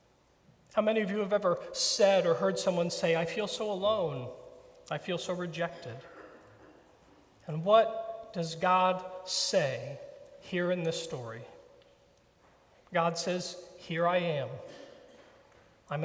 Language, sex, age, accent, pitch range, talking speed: English, male, 40-59, American, 165-210 Hz, 125 wpm